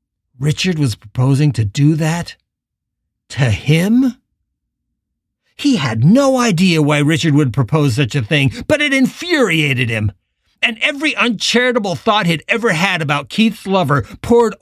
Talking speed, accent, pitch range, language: 140 wpm, American, 115-170 Hz, English